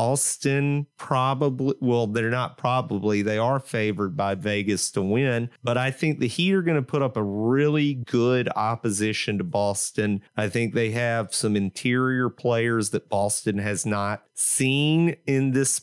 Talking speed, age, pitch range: 165 wpm, 30-49, 105-130 Hz